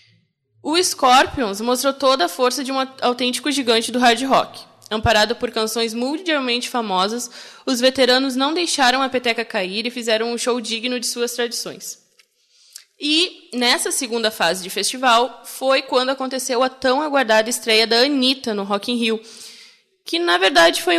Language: Portuguese